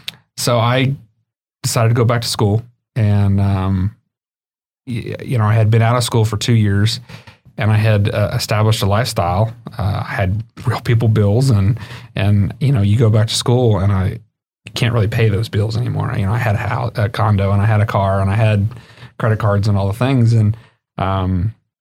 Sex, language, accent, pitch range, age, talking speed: male, English, American, 105-120 Hz, 30-49, 210 wpm